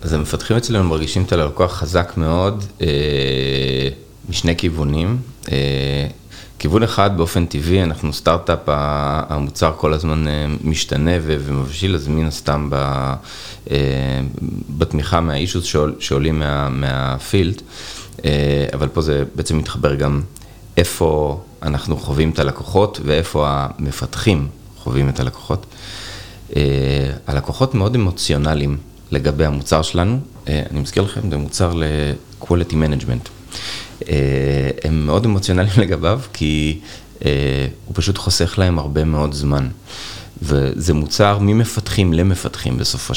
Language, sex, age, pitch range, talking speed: Hebrew, male, 30-49, 70-95 Hz, 115 wpm